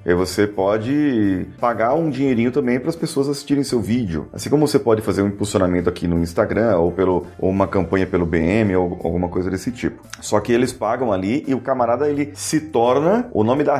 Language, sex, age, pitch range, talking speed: Portuguese, male, 30-49, 95-130 Hz, 210 wpm